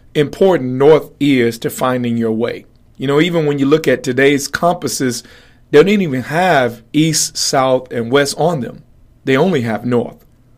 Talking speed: 170 wpm